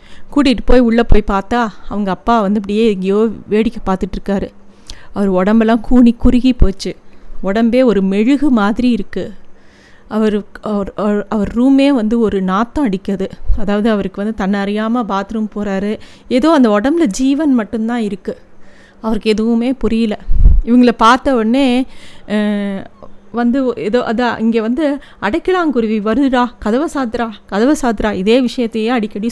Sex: female